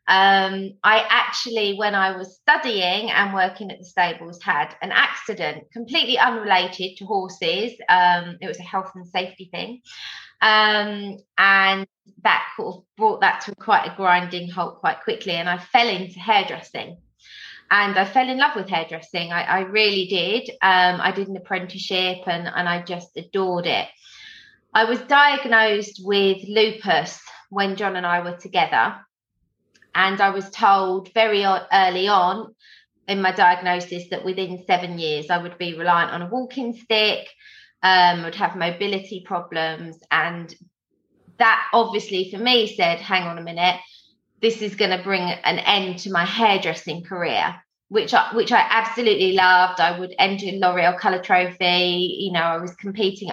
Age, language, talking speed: 20-39, English, 165 wpm